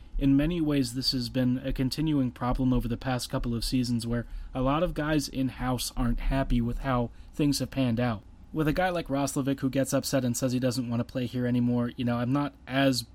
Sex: male